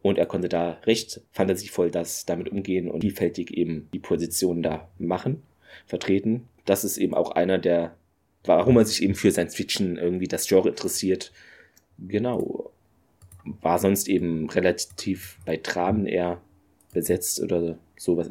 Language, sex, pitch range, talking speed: German, male, 85-110 Hz, 150 wpm